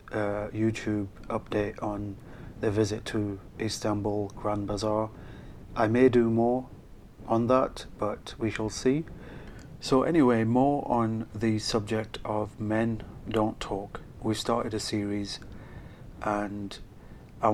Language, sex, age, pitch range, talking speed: English, male, 40-59, 105-115 Hz, 125 wpm